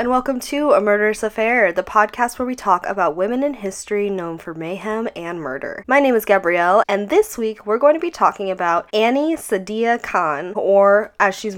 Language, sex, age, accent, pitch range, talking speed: English, female, 10-29, American, 175-225 Hz, 200 wpm